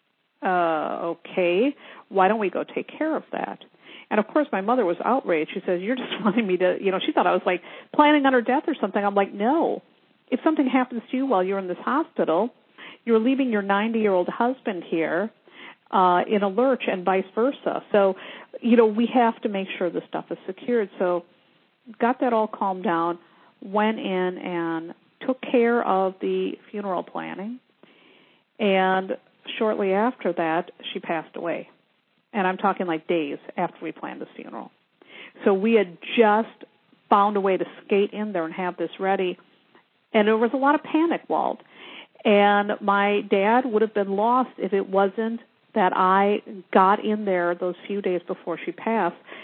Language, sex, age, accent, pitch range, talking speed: English, female, 50-69, American, 185-235 Hz, 185 wpm